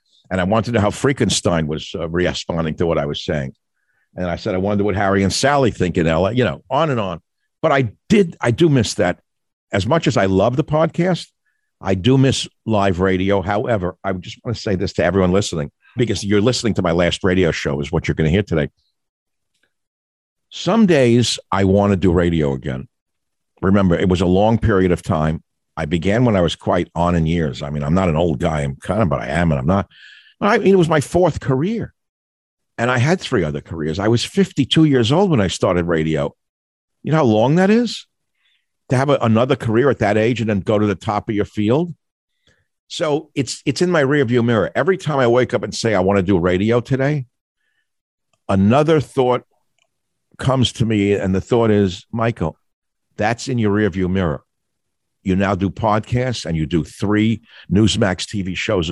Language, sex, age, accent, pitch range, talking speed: English, male, 50-69, American, 90-125 Hz, 210 wpm